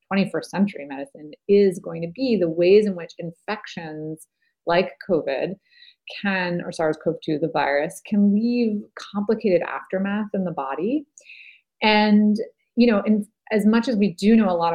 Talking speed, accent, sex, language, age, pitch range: 150 wpm, American, female, English, 30-49, 170-235 Hz